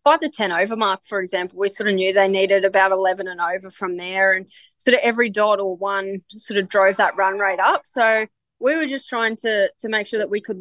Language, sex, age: English, female, 20-39